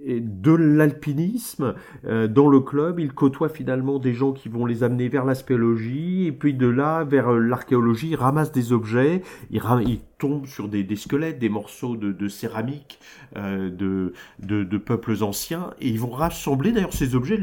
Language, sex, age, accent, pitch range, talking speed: French, male, 40-59, French, 110-145 Hz, 190 wpm